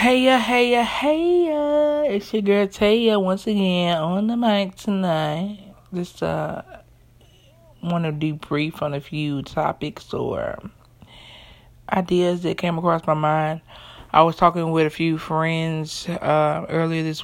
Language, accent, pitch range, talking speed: English, American, 150-180 Hz, 135 wpm